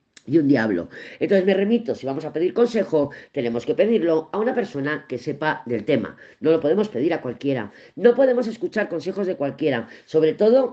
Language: Spanish